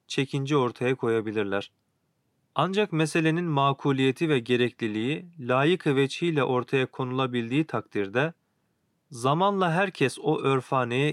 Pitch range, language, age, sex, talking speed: 120-155 Hz, Turkish, 40-59, male, 85 wpm